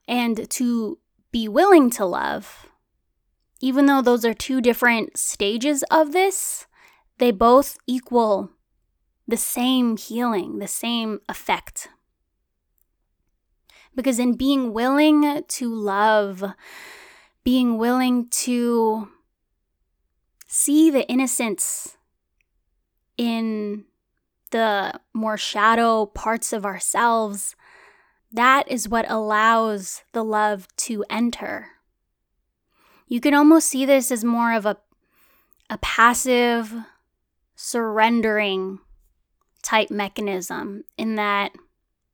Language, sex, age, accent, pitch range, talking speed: English, female, 10-29, American, 215-255 Hz, 95 wpm